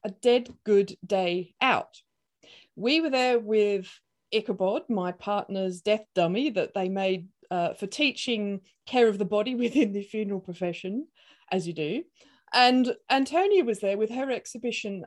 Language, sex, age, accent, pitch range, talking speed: English, female, 40-59, British, 190-250 Hz, 150 wpm